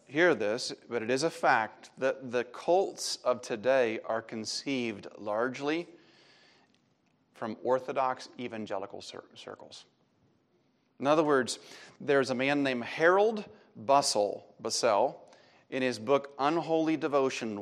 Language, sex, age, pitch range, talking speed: English, male, 30-49, 120-155 Hz, 115 wpm